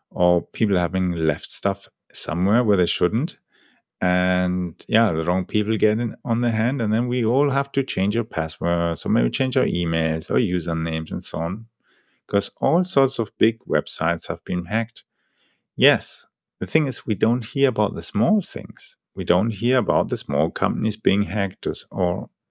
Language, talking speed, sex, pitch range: English, 180 wpm, male, 90-115 Hz